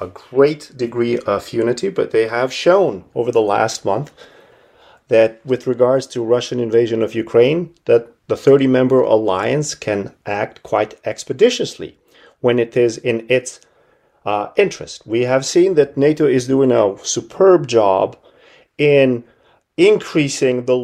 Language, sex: English, male